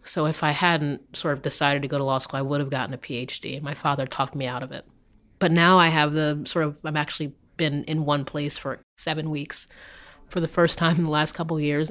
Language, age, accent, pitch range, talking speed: English, 30-49, American, 145-165 Hz, 255 wpm